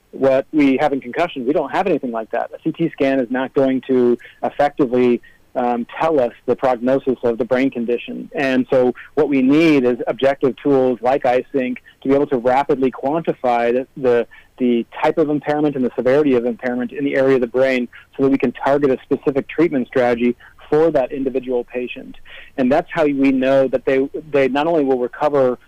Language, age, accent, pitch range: English, 40-59, American, 125-145 Hz